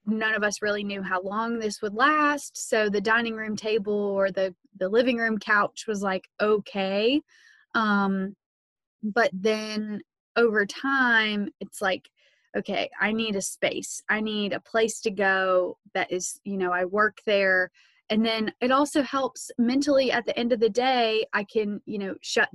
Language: English